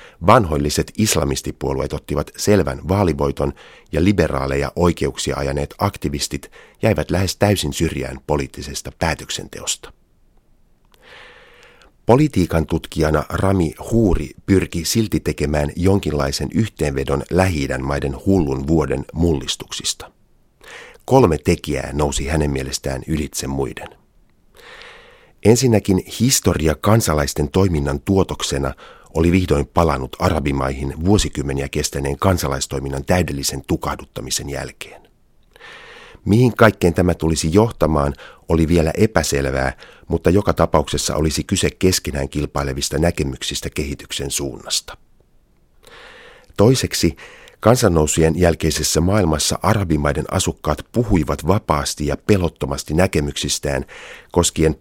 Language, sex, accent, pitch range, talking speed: Finnish, male, native, 70-95 Hz, 90 wpm